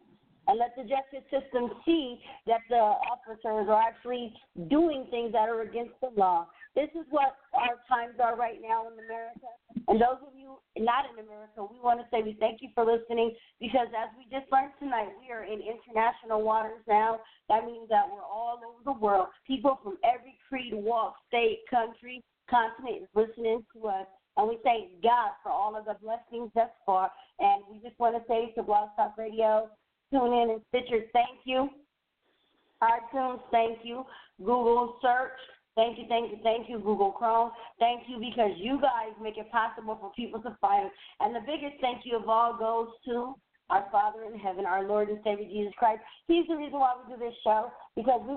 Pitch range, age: 220-260 Hz, 50-69